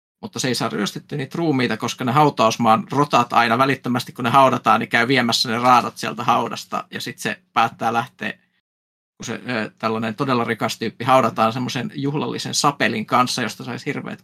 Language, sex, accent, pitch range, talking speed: Finnish, male, native, 115-145 Hz, 175 wpm